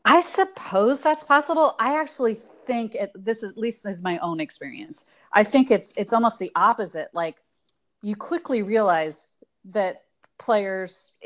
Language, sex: English, female